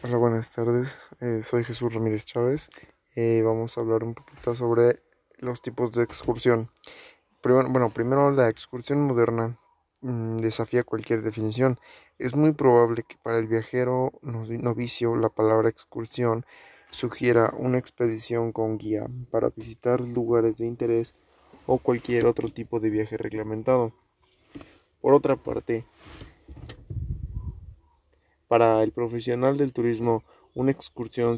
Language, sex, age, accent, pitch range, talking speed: Spanish, male, 20-39, Mexican, 110-120 Hz, 130 wpm